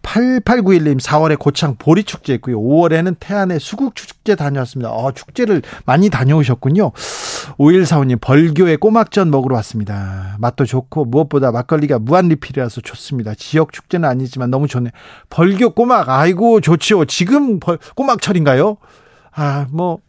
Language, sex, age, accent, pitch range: Korean, male, 40-59, native, 130-185 Hz